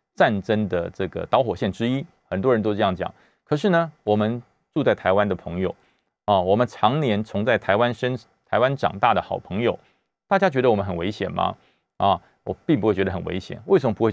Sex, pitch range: male, 100-145 Hz